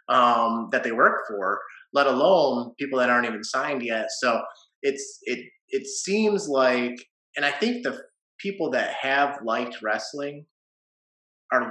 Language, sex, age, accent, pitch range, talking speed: English, male, 30-49, American, 115-145 Hz, 155 wpm